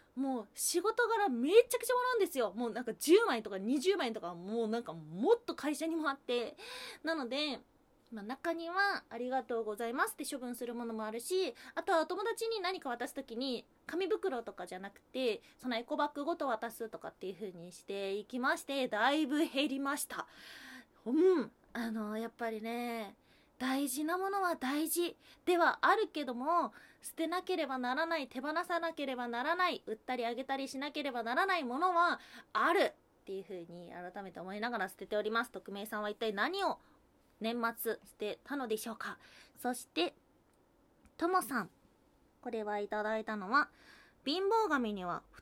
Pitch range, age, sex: 230-335 Hz, 20-39, female